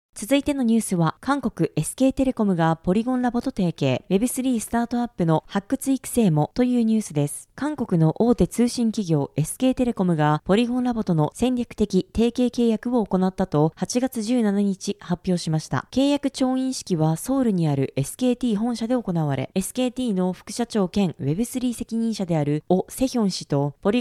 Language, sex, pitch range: Japanese, female, 170-240 Hz